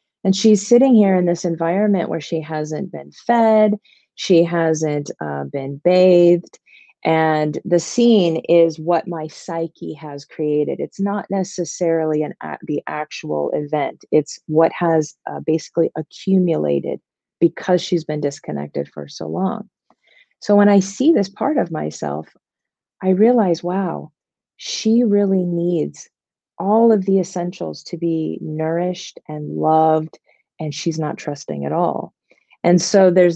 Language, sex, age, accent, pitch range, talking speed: English, female, 30-49, American, 150-185 Hz, 140 wpm